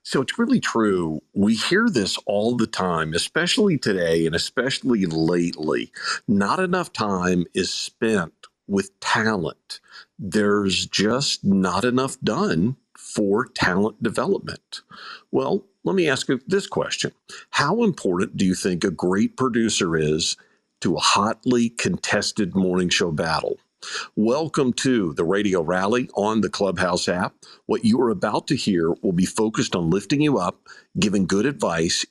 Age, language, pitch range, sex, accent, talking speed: 50-69, English, 85-110 Hz, male, American, 145 wpm